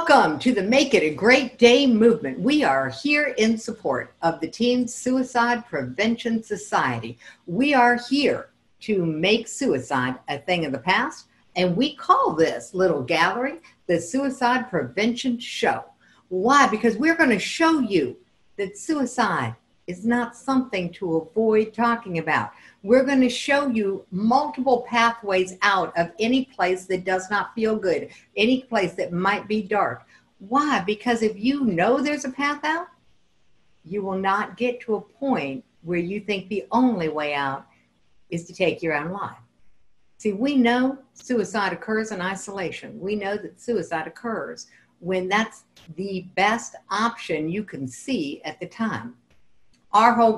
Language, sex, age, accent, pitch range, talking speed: English, female, 60-79, American, 180-250 Hz, 155 wpm